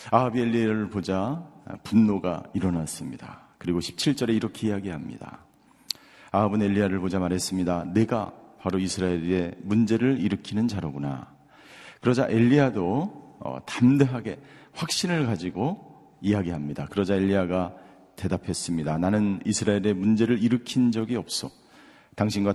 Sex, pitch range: male, 95-130 Hz